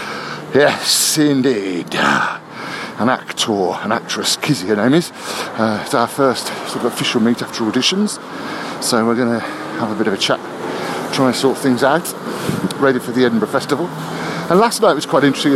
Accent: British